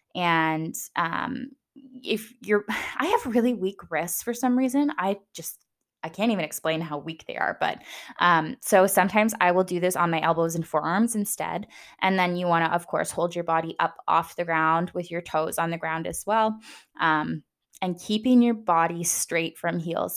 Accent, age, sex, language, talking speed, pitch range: American, 10-29, female, English, 195 wpm, 165-205 Hz